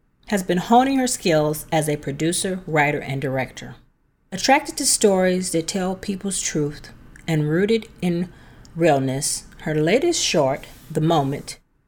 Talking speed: 135 wpm